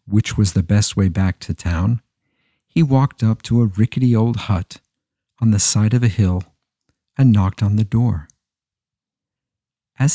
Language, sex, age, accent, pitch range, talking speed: English, male, 50-69, American, 105-130 Hz, 165 wpm